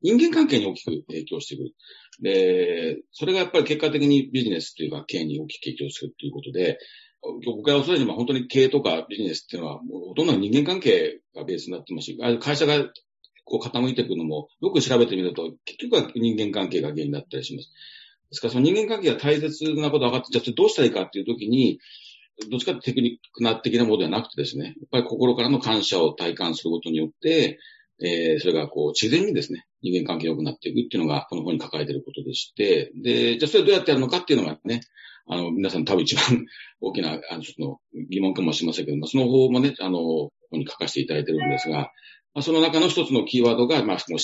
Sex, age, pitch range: male, 40-59, 120-175 Hz